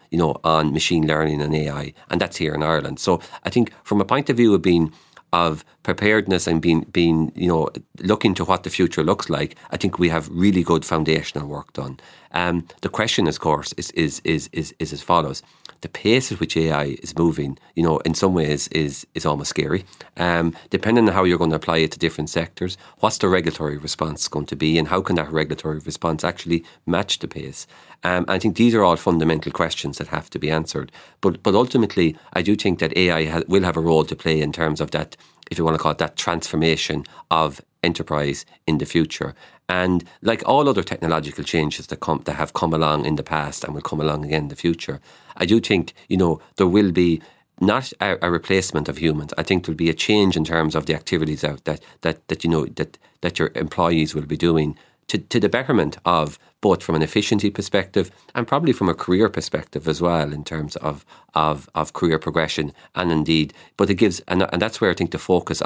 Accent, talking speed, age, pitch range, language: Irish, 225 wpm, 40-59, 75-90 Hz, English